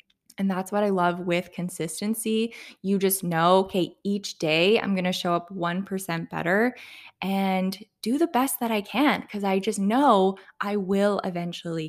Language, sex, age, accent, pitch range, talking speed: English, female, 20-39, American, 180-225 Hz, 170 wpm